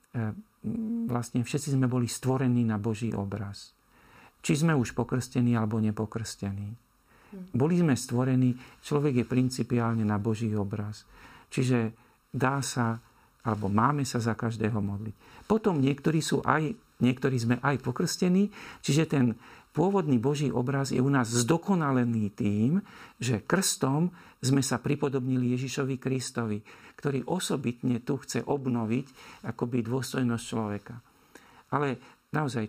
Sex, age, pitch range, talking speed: male, 50-69, 115-135 Hz, 125 wpm